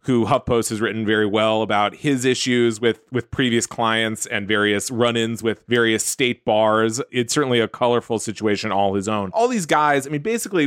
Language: English